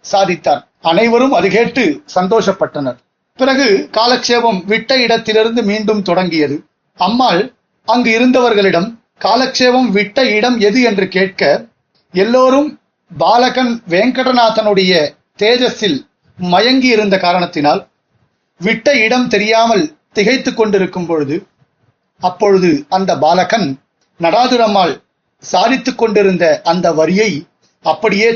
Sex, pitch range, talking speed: male, 185-245 Hz, 85 wpm